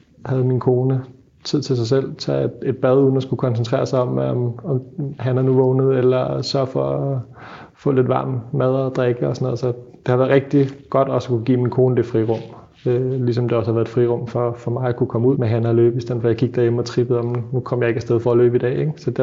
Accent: native